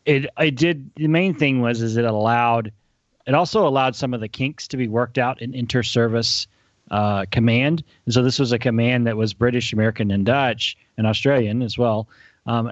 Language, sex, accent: English, male, American